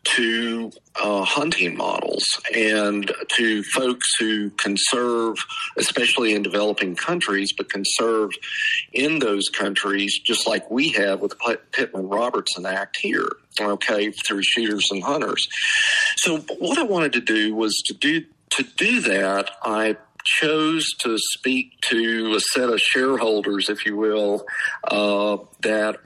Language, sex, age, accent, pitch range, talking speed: English, male, 50-69, American, 100-130 Hz, 135 wpm